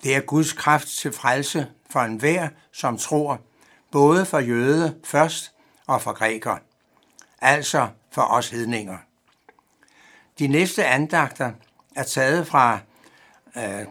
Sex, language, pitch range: male, Danish, 125-155 Hz